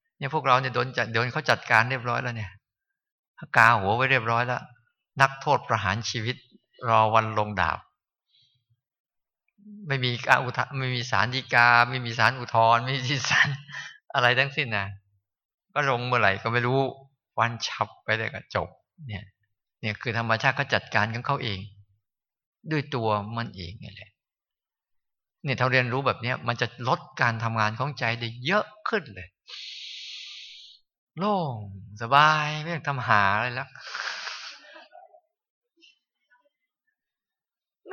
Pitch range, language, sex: 115-150 Hz, Thai, male